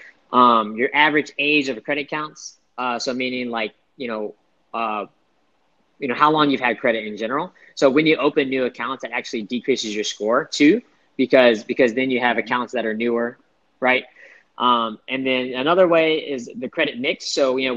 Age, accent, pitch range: 20-39, American, 115-130 Hz